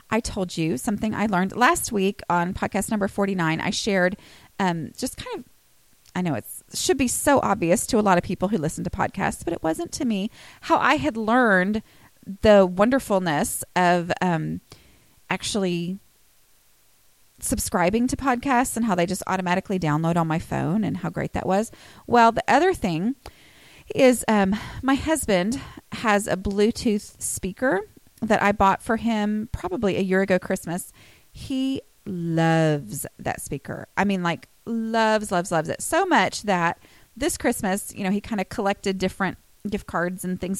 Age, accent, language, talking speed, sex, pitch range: 30-49, American, English, 170 wpm, female, 180-235 Hz